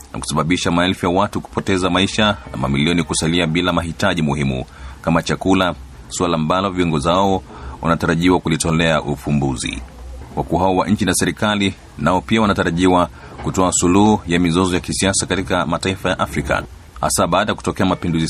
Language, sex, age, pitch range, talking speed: Swahili, male, 40-59, 80-95 Hz, 150 wpm